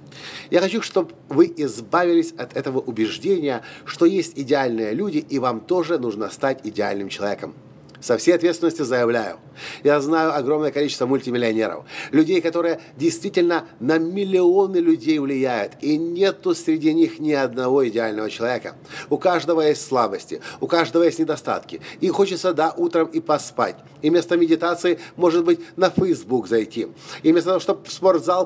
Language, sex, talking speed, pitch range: Russian, male, 150 wpm, 140-180 Hz